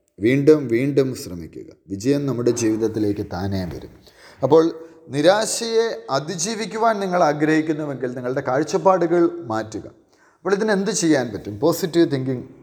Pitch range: 115-160 Hz